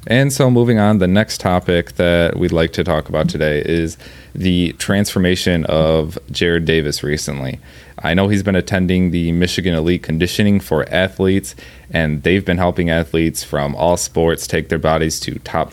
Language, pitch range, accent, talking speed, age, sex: English, 80-90 Hz, American, 170 wpm, 20-39, male